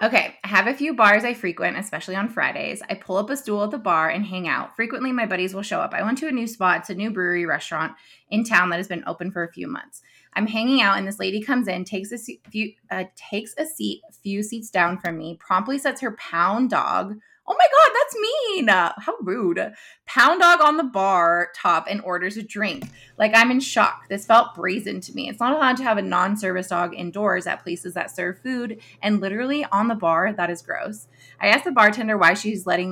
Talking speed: 230 wpm